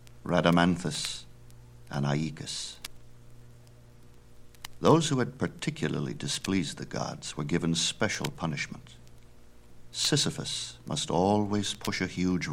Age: 60-79